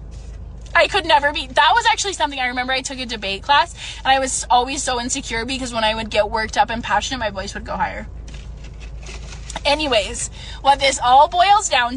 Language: English